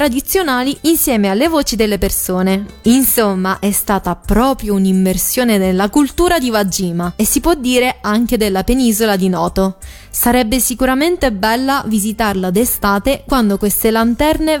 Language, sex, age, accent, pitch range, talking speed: Italian, female, 20-39, native, 200-255 Hz, 125 wpm